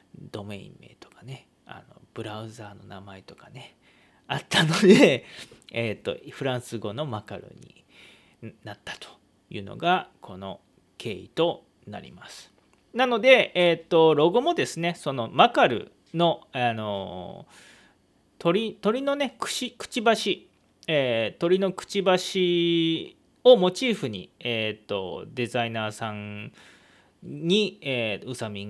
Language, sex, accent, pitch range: Japanese, male, native, 115-180 Hz